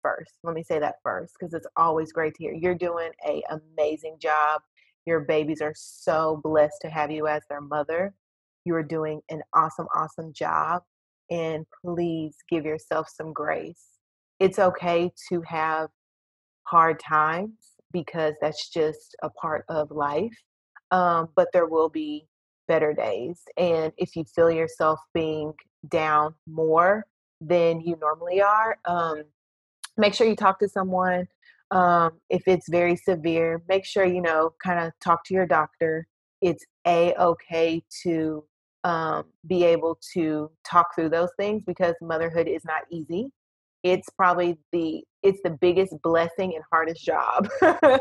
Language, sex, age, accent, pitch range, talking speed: English, female, 30-49, American, 160-185 Hz, 150 wpm